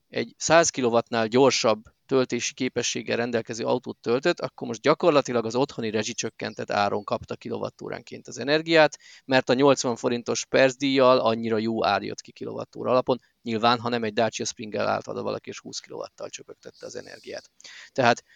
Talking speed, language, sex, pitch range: 145 wpm, Hungarian, male, 115-150 Hz